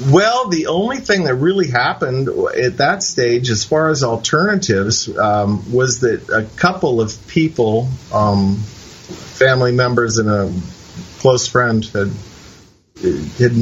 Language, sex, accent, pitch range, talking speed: English, male, American, 110-135 Hz, 130 wpm